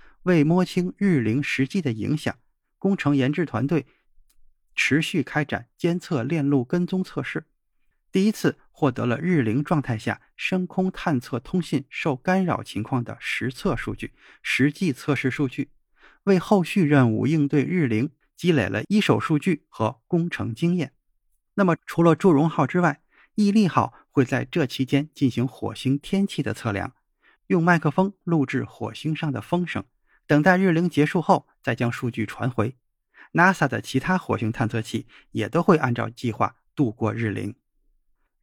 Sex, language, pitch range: male, Chinese, 125-170 Hz